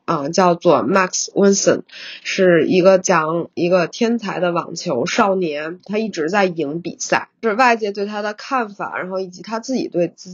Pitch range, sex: 180-230 Hz, female